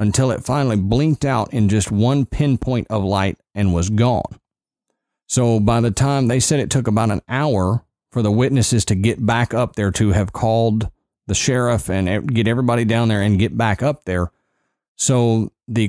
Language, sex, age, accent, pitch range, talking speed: English, male, 40-59, American, 105-130 Hz, 190 wpm